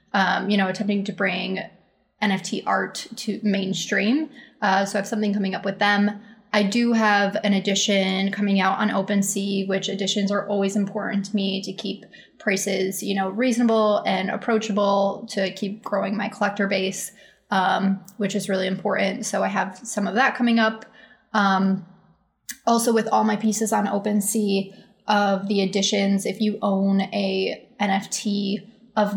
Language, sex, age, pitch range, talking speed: English, female, 20-39, 195-220 Hz, 165 wpm